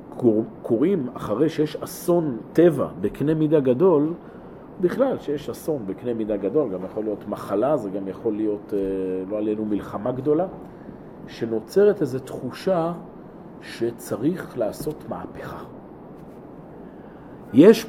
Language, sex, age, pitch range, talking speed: Hebrew, male, 40-59, 120-180 Hz, 115 wpm